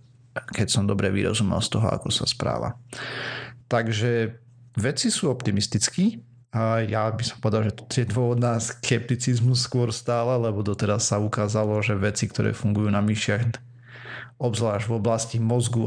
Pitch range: 110-120 Hz